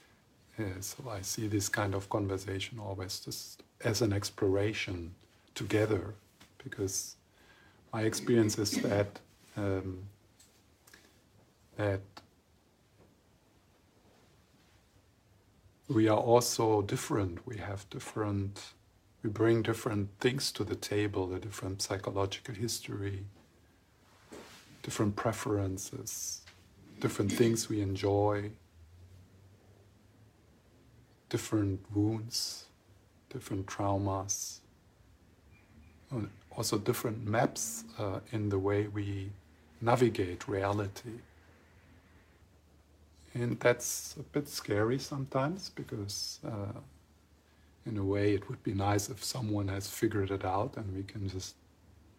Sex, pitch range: male, 95-115 Hz